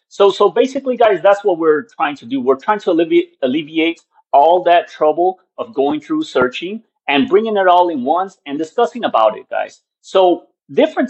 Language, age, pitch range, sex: English, 30-49, 150-240 Hz, male